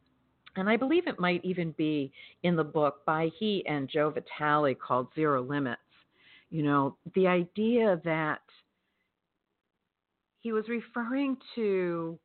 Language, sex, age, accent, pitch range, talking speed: English, female, 50-69, American, 155-220 Hz, 130 wpm